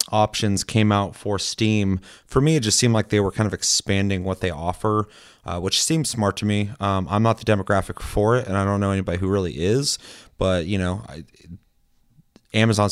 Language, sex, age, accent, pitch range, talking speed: English, male, 30-49, American, 95-110 Hz, 205 wpm